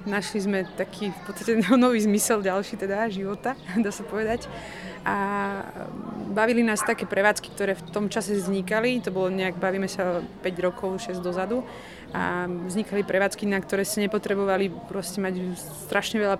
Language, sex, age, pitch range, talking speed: Slovak, female, 30-49, 185-210 Hz, 155 wpm